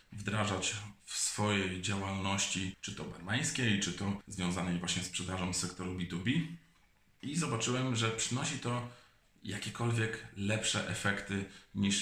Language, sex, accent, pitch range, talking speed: Polish, male, native, 95-115 Hz, 120 wpm